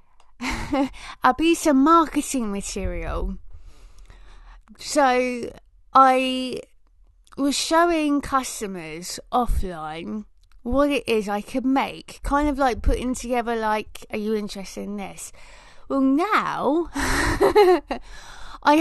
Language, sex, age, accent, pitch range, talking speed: English, female, 20-39, British, 200-275 Hz, 100 wpm